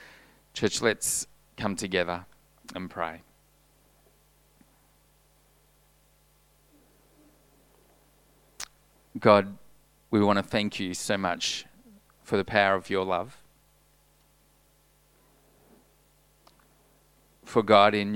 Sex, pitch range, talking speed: male, 100-140 Hz, 75 wpm